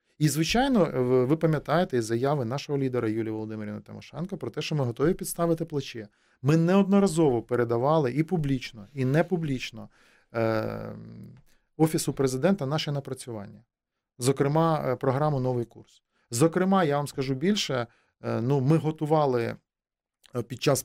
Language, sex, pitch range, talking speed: Ukrainian, male, 120-165 Hz, 125 wpm